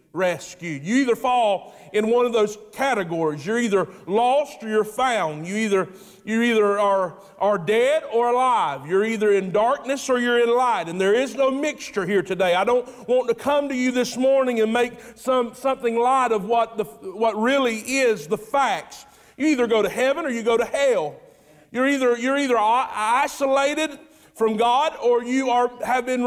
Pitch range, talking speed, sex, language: 190-250 Hz, 190 wpm, male, English